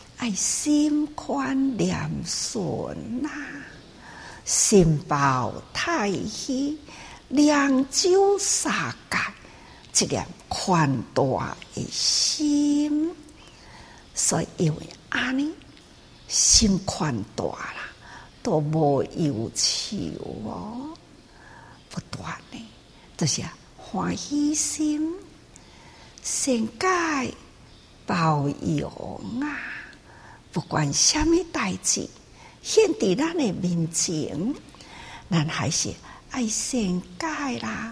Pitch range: 185-300 Hz